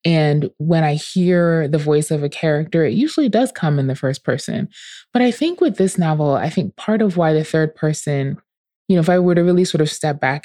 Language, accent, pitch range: English, American, 145-170 Hz